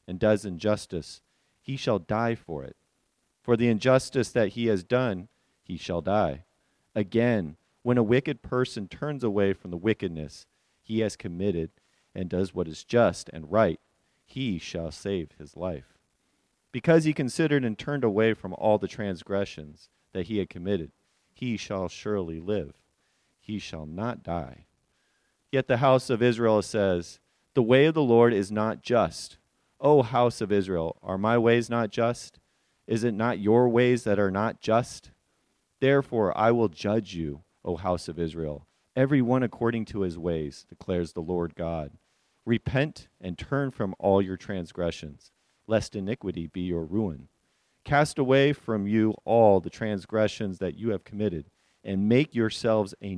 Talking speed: 160 wpm